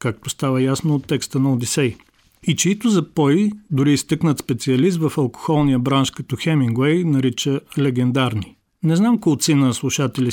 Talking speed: 145 wpm